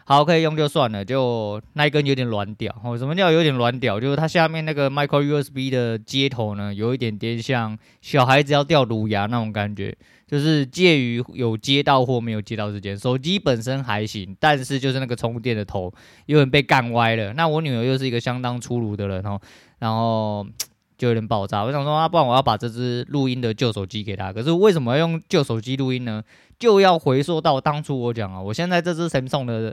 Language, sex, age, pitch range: Chinese, male, 20-39, 110-140 Hz